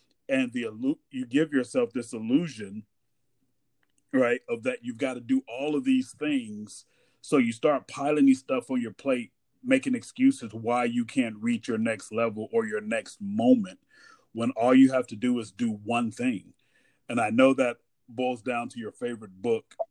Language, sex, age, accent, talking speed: English, male, 40-59, American, 180 wpm